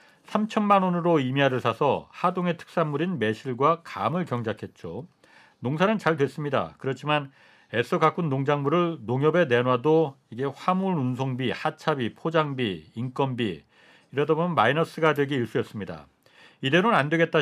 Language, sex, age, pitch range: Korean, male, 40-59, 130-165 Hz